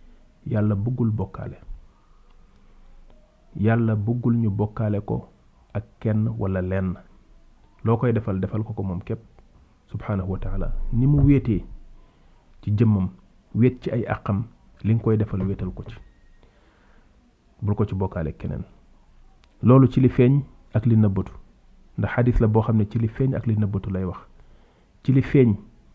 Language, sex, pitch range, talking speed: French, male, 100-125 Hz, 70 wpm